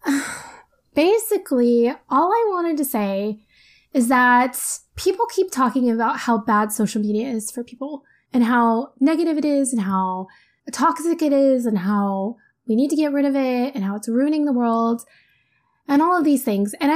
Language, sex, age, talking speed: English, female, 10-29, 175 wpm